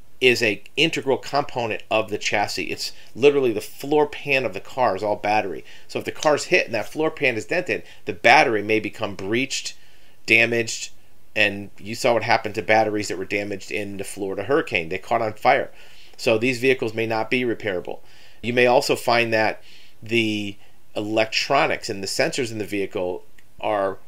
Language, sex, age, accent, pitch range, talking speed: English, male, 40-59, American, 105-125 Hz, 185 wpm